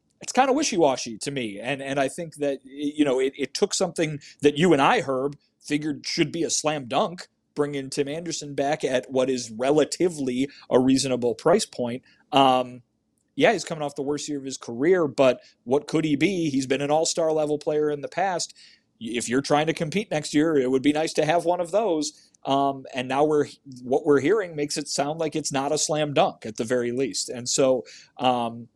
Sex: male